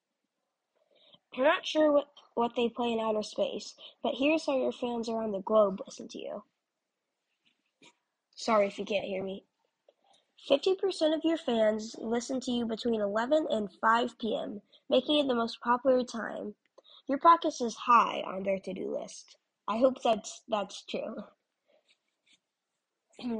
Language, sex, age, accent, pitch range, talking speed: English, female, 10-29, American, 220-295 Hz, 150 wpm